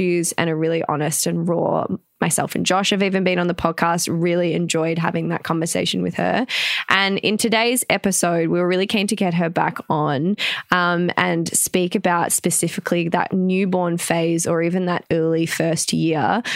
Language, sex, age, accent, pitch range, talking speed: English, female, 20-39, Australian, 165-185 Hz, 180 wpm